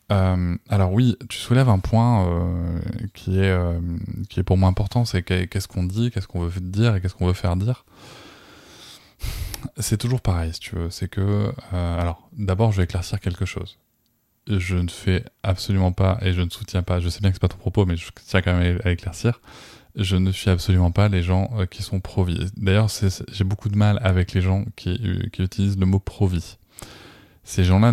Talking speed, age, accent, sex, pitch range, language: 220 wpm, 20-39, French, male, 90-105 Hz, French